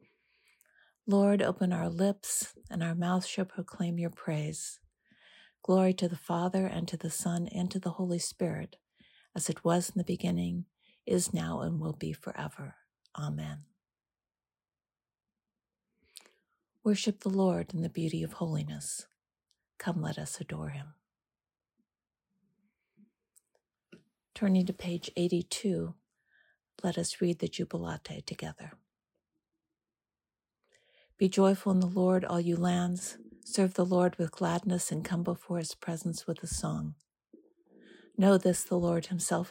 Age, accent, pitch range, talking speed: 60-79, American, 170-190 Hz, 130 wpm